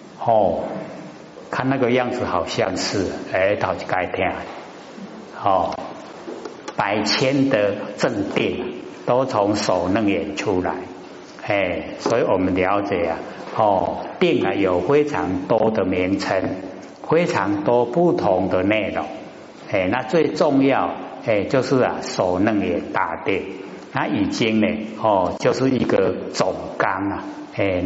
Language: Chinese